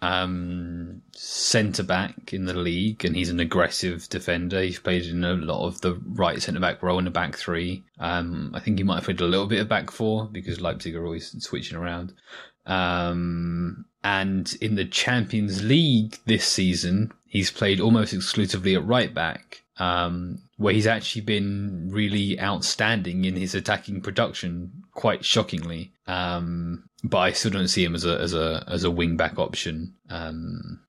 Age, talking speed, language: 20-39, 175 wpm, English